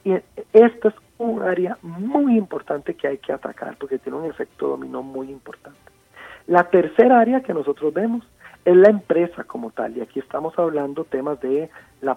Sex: male